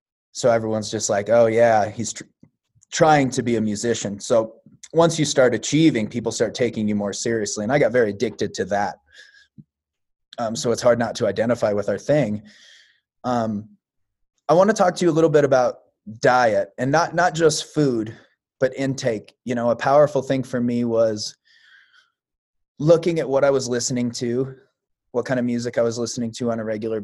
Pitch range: 110-135 Hz